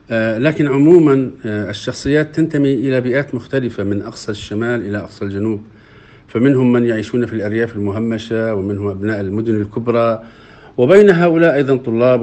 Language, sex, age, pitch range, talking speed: Arabic, male, 50-69, 115-155 Hz, 130 wpm